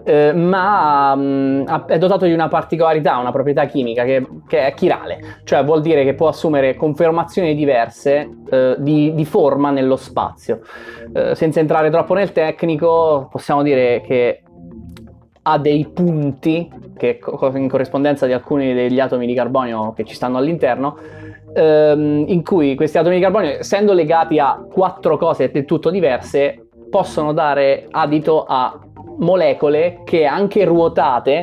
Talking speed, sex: 145 wpm, male